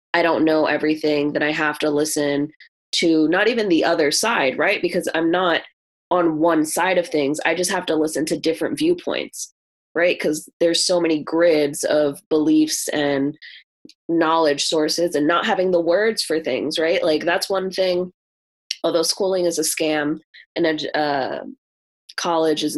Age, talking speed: 20-39, 170 wpm